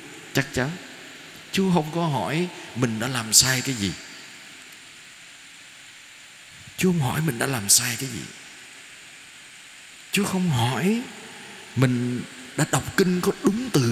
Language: Vietnamese